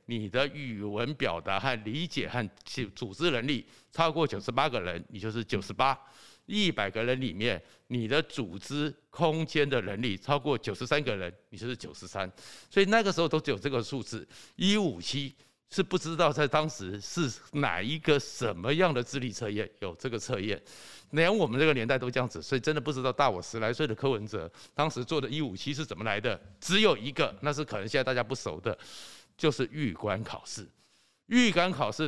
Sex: male